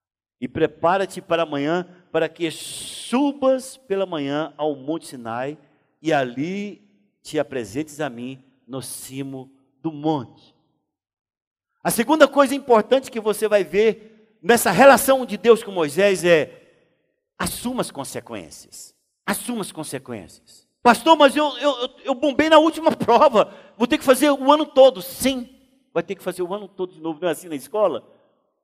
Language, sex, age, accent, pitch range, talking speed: Portuguese, male, 60-79, Brazilian, 150-235 Hz, 155 wpm